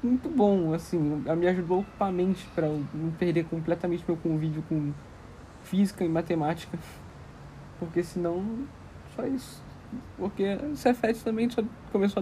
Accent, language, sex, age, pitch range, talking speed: Brazilian, Portuguese, male, 20-39, 140-185 Hz, 140 wpm